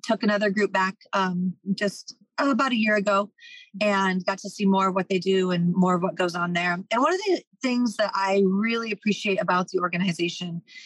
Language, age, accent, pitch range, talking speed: English, 30-49, American, 175-210 Hz, 210 wpm